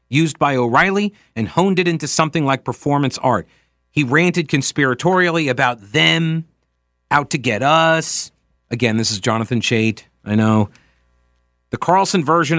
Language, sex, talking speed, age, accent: English, male, 145 wpm, 40-59, American